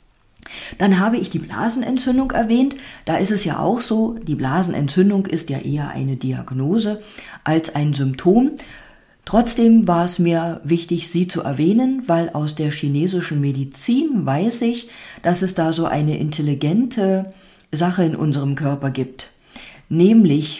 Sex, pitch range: female, 150-210 Hz